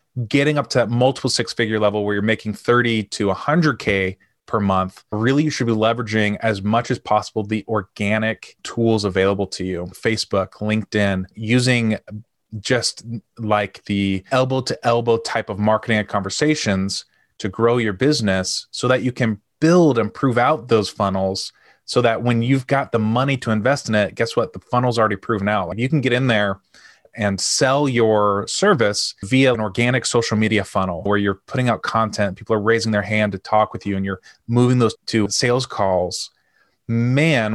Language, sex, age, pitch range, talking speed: English, male, 20-39, 105-125 Hz, 185 wpm